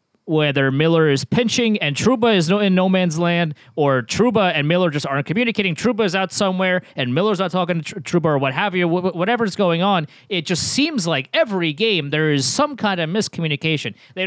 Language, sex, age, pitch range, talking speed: English, male, 30-49, 155-220 Hz, 210 wpm